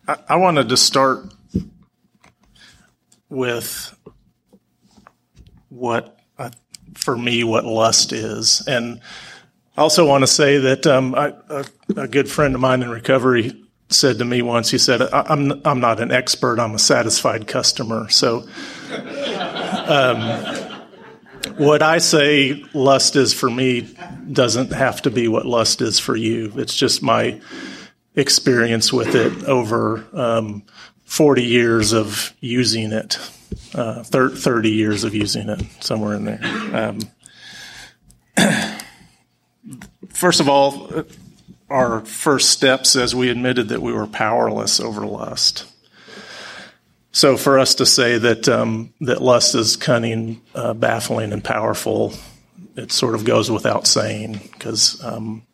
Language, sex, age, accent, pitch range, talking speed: English, male, 40-59, American, 115-140 Hz, 135 wpm